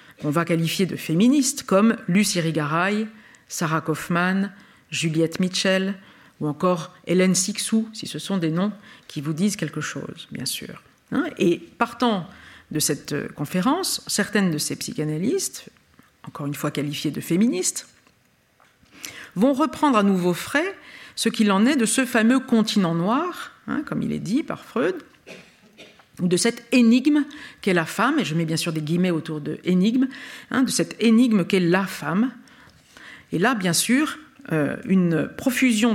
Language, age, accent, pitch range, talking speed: French, 50-69, French, 165-235 Hz, 155 wpm